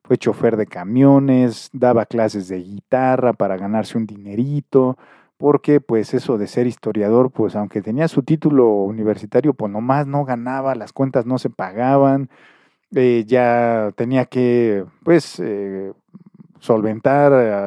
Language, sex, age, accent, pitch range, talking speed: Spanish, male, 40-59, Mexican, 110-135 Hz, 140 wpm